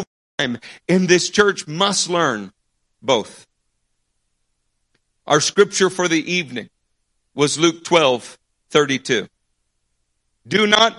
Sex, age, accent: male, 50-69, American